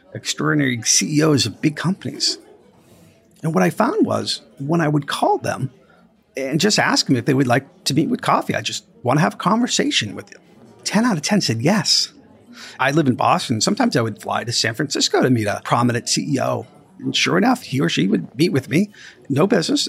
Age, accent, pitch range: 40-59, American, 130-210 Hz